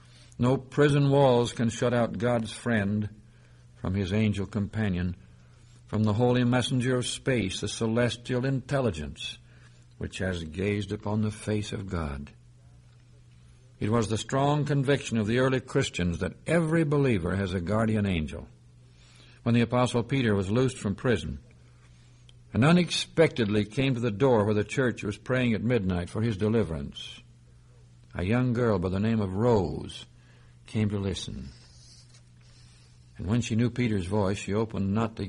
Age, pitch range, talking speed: 60-79, 95-125 Hz, 155 wpm